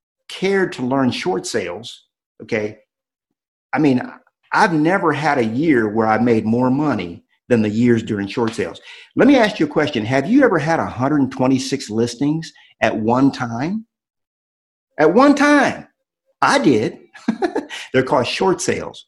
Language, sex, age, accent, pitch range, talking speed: English, male, 50-69, American, 110-165 Hz, 150 wpm